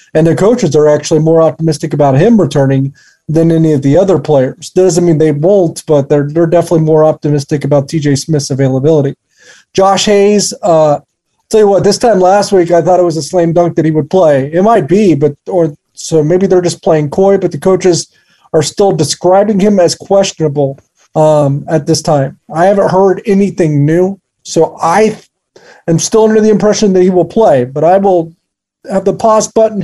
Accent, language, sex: American, English, male